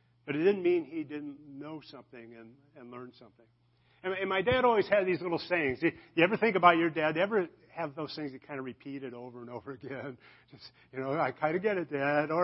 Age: 50-69